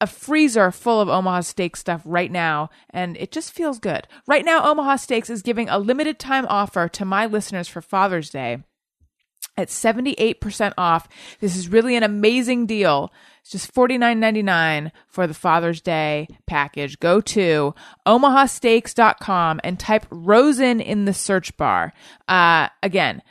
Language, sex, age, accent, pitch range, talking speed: English, female, 30-49, American, 185-255 Hz, 150 wpm